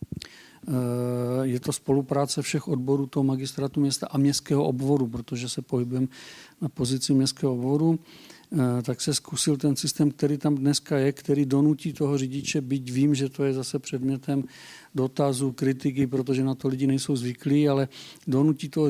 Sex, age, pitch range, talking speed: male, 50-69, 130-145 Hz, 155 wpm